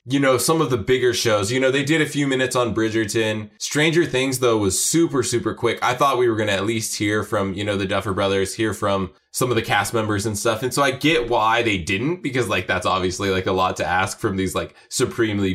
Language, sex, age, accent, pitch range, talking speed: English, male, 20-39, American, 100-130 Hz, 260 wpm